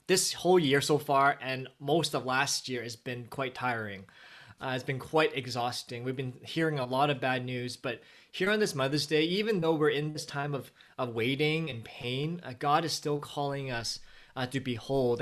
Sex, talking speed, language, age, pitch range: male, 210 wpm, English, 20-39, 125-150 Hz